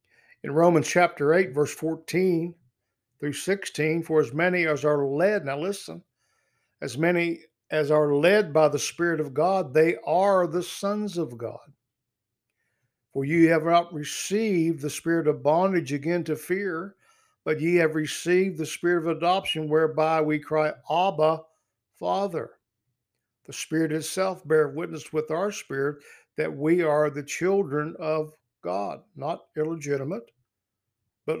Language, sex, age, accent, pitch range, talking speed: English, male, 60-79, American, 140-175 Hz, 145 wpm